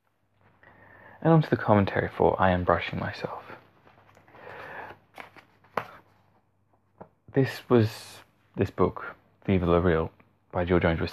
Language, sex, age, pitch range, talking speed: English, male, 20-39, 90-105 Hz, 115 wpm